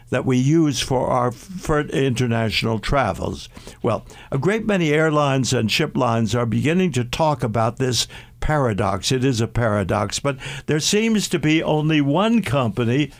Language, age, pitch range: English, 60-79, 125-160 Hz